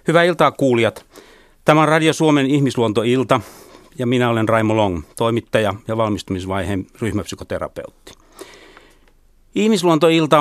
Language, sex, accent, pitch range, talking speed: Finnish, male, native, 105-130 Hz, 100 wpm